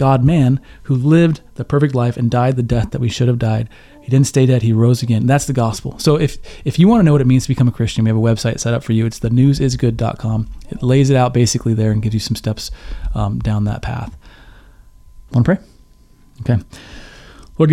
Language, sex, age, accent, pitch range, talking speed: English, male, 30-49, American, 110-130 Hz, 235 wpm